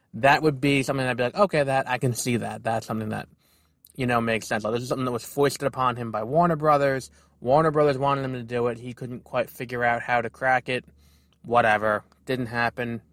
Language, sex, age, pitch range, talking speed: English, male, 20-39, 120-150 Hz, 230 wpm